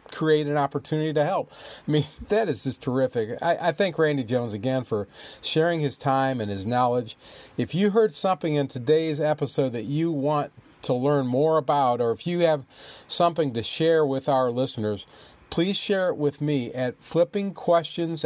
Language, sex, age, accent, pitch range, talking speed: English, male, 40-59, American, 130-165 Hz, 180 wpm